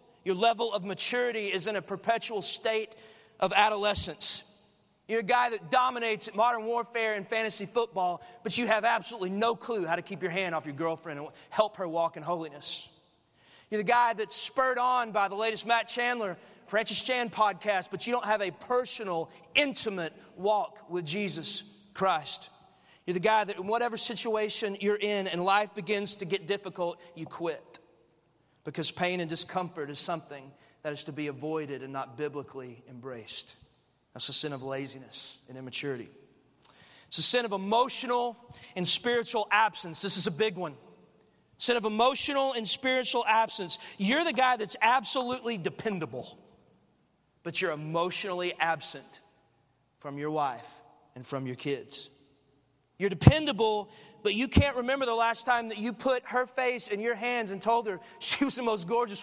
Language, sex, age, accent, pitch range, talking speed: English, male, 30-49, American, 170-235 Hz, 170 wpm